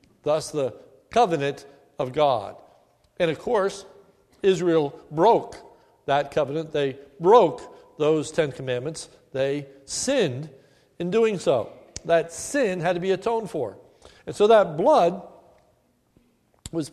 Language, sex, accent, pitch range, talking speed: English, male, American, 165-215 Hz, 120 wpm